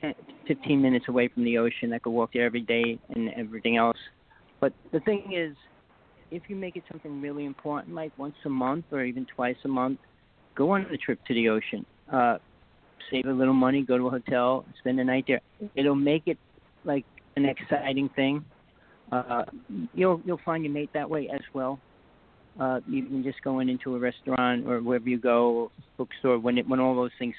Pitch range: 125-150 Hz